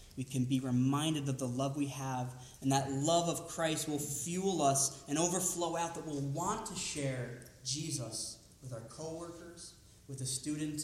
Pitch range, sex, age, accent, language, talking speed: 125-165 Hz, male, 30-49, American, English, 175 wpm